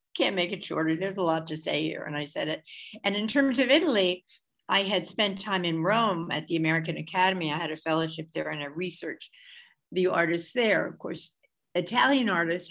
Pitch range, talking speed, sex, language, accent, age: 155-195 Hz, 210 wpm, female, English, American, 60-79